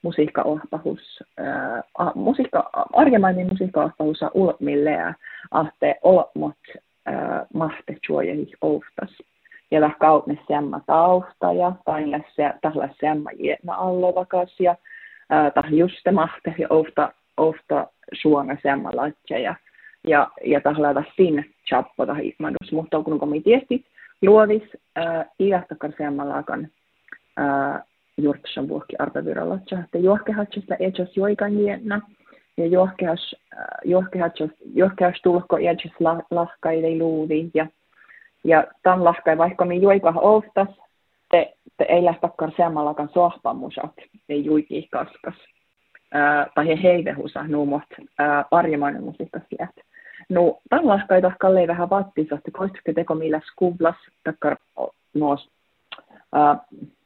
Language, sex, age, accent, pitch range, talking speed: Finnish, female, 30-49, native, 150-185 Hz, 85 wpm